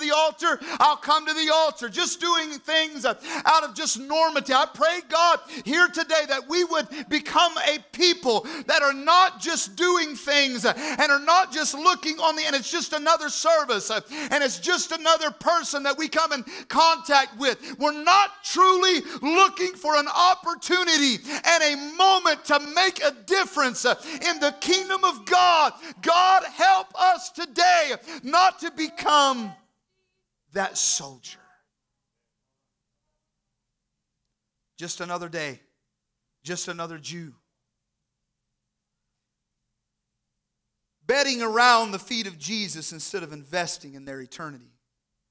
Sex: male